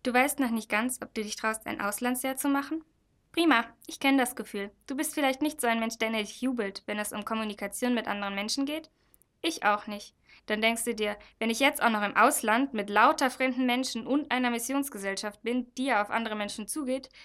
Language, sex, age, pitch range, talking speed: German, female, 10-29, 210-265 Hz, 225 wpm